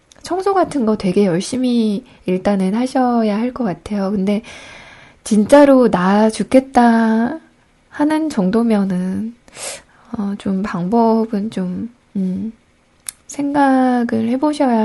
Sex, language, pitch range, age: female, Korean, 195-245 Hz, 20-39